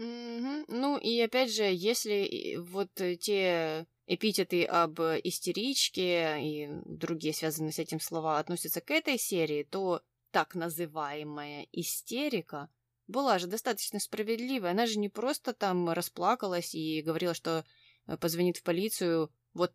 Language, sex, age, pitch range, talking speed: Russian, female, 20-39, 155-205 Hz, 130 wpm